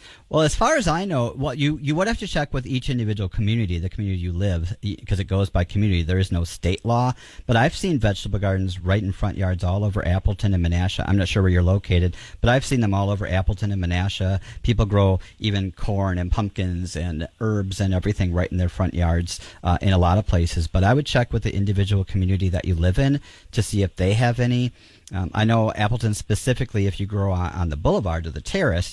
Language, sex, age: English, male, 40-59